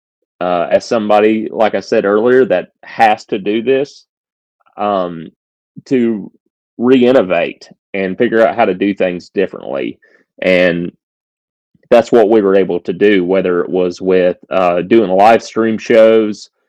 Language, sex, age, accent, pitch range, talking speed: English, male, 30-49, American, 90-115 Hz, 145 wpm